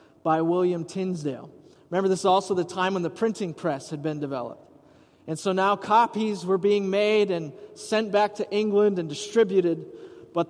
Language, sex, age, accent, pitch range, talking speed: English, male, 30-49, American, 175-215 Hz, 175 wpm